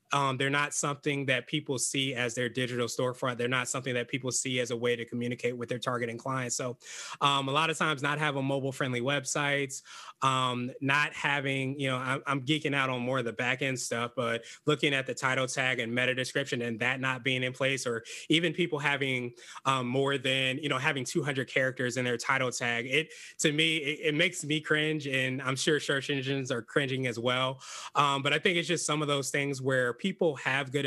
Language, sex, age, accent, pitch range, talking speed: English, male, 20-39, American, 125-145 Hz, 220 wpm